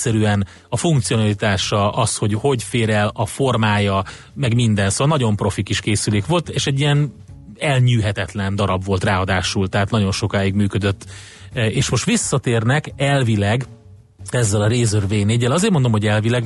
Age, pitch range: 30-49, 100-120 Hz